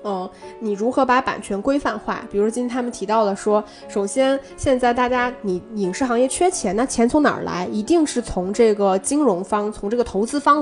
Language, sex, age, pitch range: Chinese, female, 10-29, 200-260 Hz